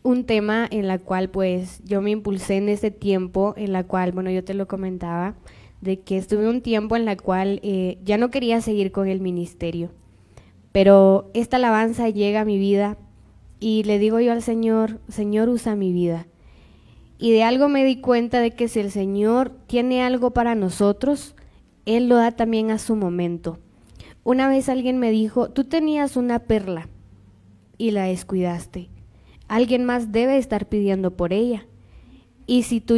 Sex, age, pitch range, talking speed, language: female, 20-39, 190-235 Hz, 175 wpm, Spanish